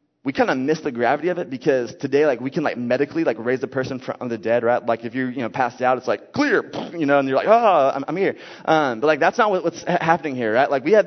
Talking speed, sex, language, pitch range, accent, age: 295 wpm, male, English, 135-175 Hz, American, 20-39